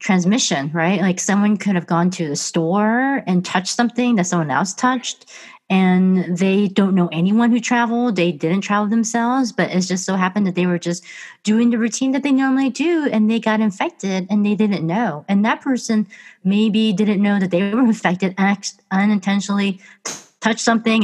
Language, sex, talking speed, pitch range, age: English, female, 190 wpm, 180-230 Hz, 30-49